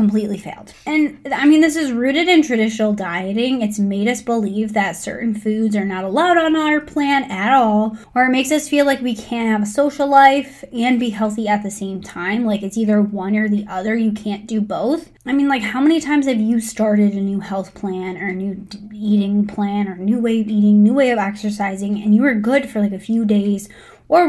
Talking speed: 230 wpm